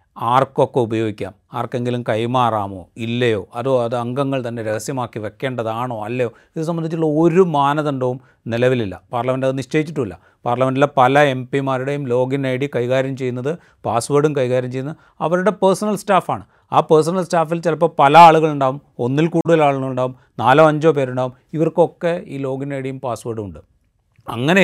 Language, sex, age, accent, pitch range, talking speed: Malayalam, male, 30-49, native, 120-150 Hz, 130 wpm